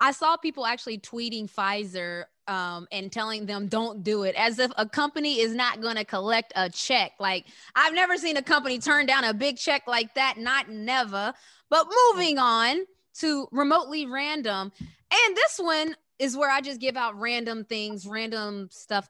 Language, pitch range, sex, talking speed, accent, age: English, 220-305 Hz, female, 180 wpm, American, 20-39